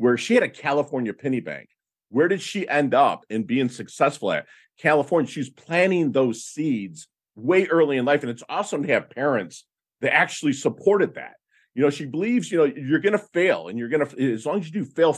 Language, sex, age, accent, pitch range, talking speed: English, male, 50-69, American, 115-160 Hz, 220 wpm